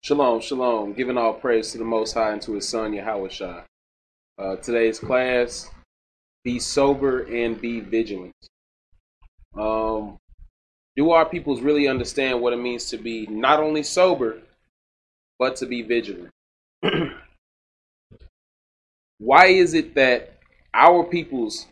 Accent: American